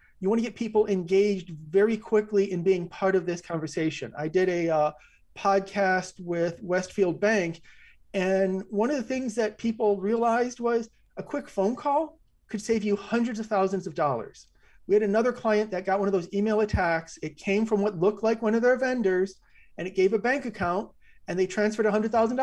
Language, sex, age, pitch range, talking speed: English, male, 40-59, 185-225 Hz, 195 wpm